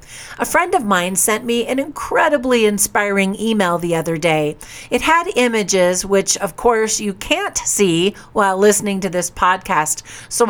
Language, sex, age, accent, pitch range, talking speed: English, female, 50-69, American, 180-235 Hz, 160 wpm